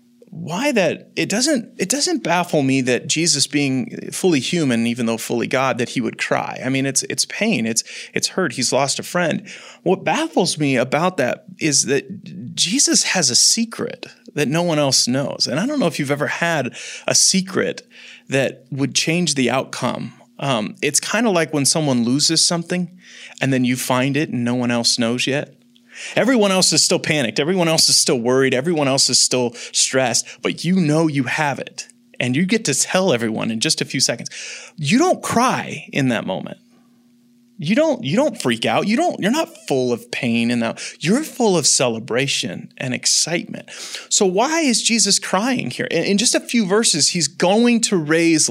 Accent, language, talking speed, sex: American, English, 195 wpm, male